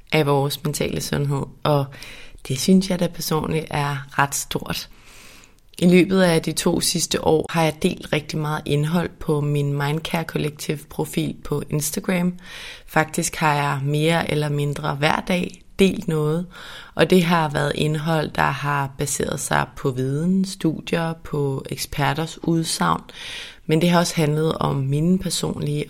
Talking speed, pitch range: 155 wpm, 145-170 Hz